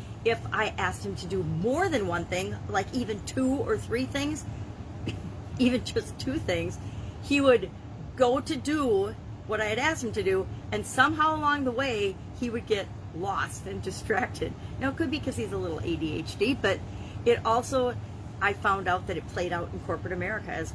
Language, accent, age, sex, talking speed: English, American, 40-59, female, 190 wpm